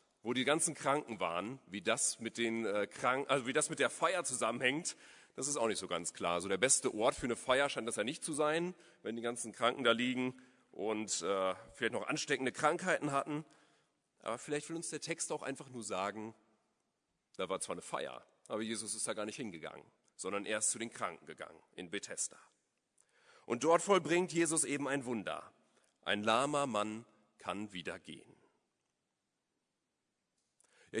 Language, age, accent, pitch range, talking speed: German, 40-59, German, 115-160 Hz, 185 wpm